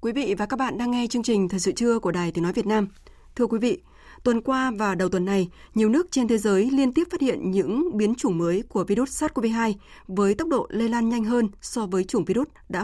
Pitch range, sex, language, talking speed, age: 190-250 Hz, female, Vietnamese, 255 wpm, 20-39